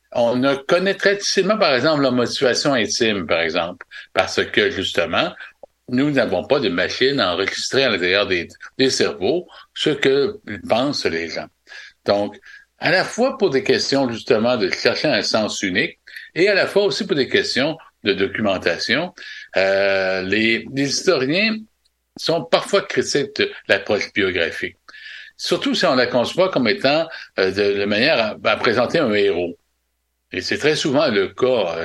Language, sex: French, male